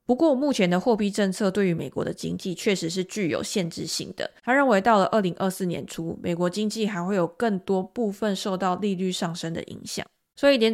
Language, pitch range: Chinese, 175-220 Hz